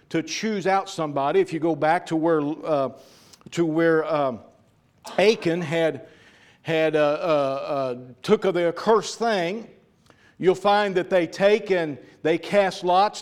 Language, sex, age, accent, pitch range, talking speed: English, male, 50-69, American, 160-200 Hz, 150 wpm